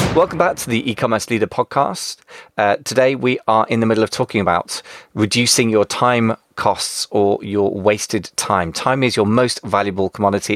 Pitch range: 95-115 Hz